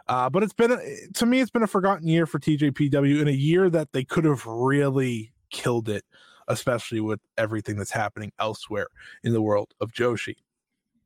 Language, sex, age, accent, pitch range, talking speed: English, male, 20-39, American, 120-180 Hz, 185 wpm